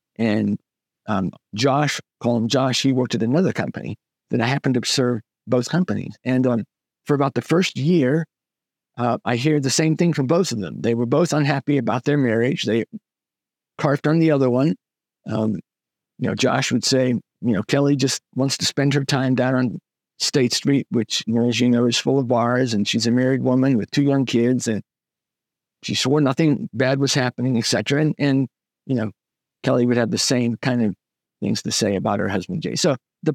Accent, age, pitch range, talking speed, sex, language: American, 50-69, 120-145 Hz, 205 wpm, male, English